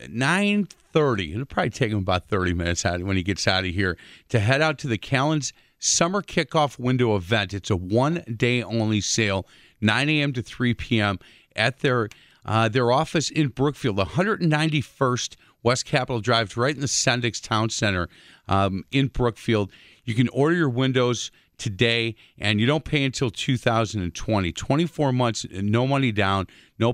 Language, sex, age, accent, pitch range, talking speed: English, male, 40-59, American, 105-130 Hz, 165 wpm